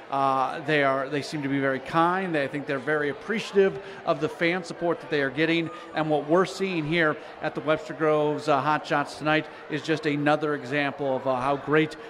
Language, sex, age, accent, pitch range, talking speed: English, male, 40-59, American, 140-165 Hz, 220 wpm